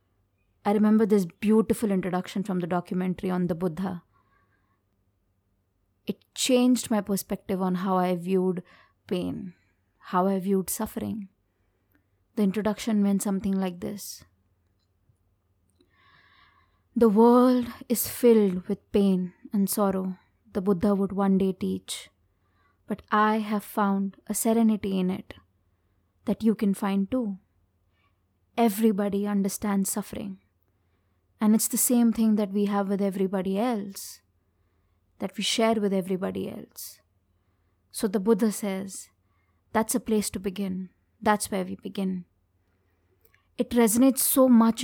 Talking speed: 125 wpm